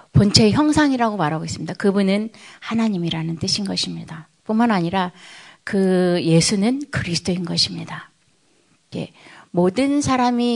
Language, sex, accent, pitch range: Korean, female, native, 170-225 Hz